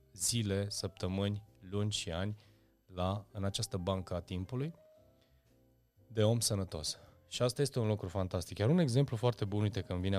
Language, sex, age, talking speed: Romanian, male, 20-39, 170 wpm